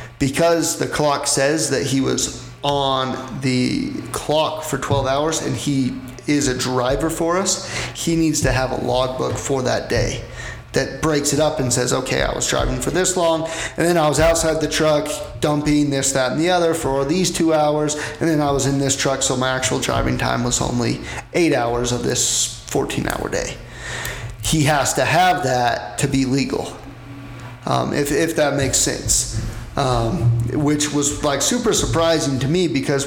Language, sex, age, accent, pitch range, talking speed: English, male, 30-49, American, 125-150 Hz, 185 wpm